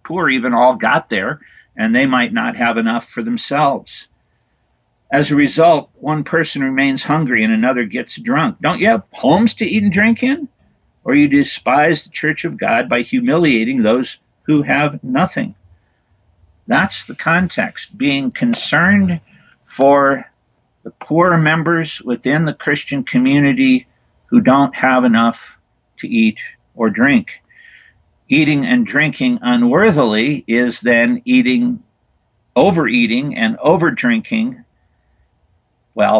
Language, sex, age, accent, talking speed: English, male, 60-79, American, 130 wpm